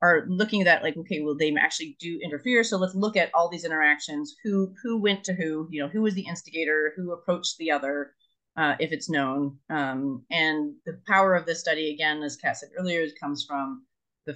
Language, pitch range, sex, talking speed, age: English, 140-200 Hz, female, 215 wpm, 30-49